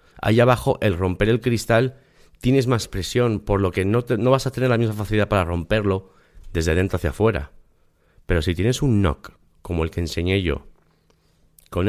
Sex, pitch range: male, 80-115 Hz